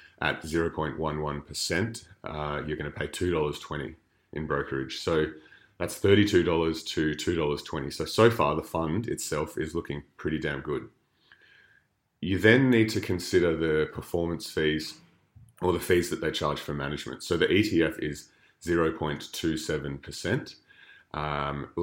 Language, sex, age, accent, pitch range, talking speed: English, male, 30-49, Australian, 75-85 Hz, 125 wpm